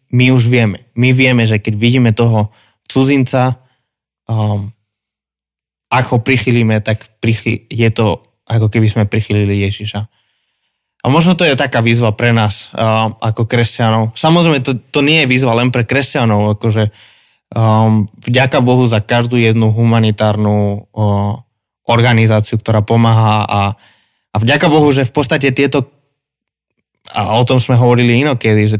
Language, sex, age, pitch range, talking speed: Slovak, male, 20-39, 110-125 Hz, 145 wpm